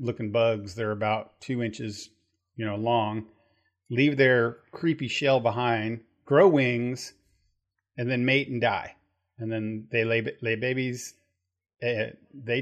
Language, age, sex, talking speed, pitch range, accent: English, 30-49, male, 135 wpm, 105-130 Hz, American